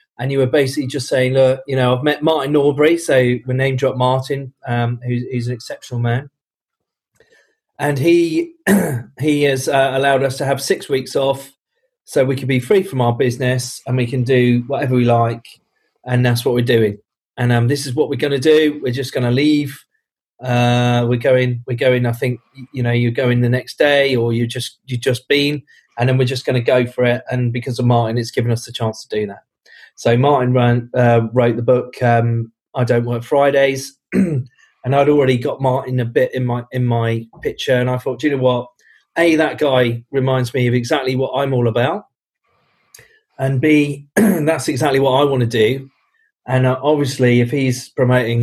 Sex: male